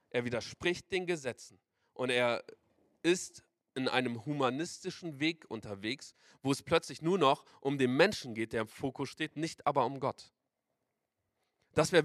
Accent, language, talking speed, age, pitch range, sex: German, German, 155 wpm, 40-59, 155-220 Hz, male